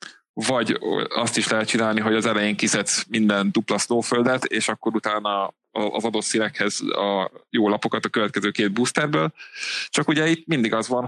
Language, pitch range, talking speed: Hungarian, 105-125 Hz, 170 wpm